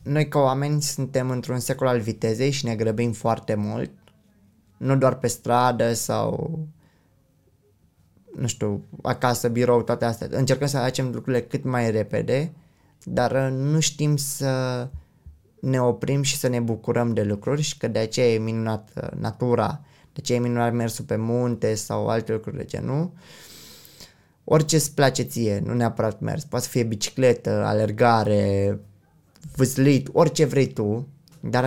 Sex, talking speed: male, 150 wpm